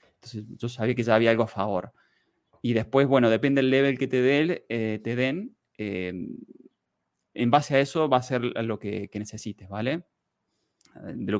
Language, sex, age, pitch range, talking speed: Spanish, male, 20-39, 110-125 Hz, 175 wpm